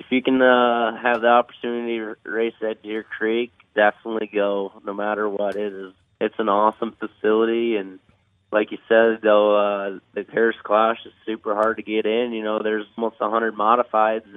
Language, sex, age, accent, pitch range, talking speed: English, male, 20-39, American, 105-115 Hz, 175 wpm